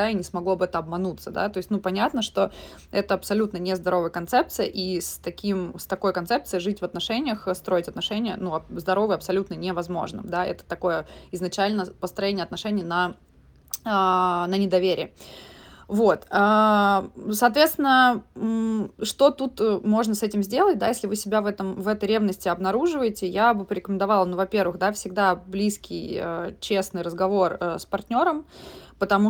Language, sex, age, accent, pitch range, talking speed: Russian, female, 20-39, native, 180-210 Hz, 145 wpm